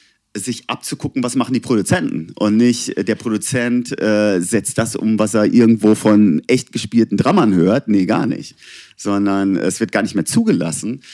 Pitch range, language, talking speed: 100-120 Hz, German, 170 wpm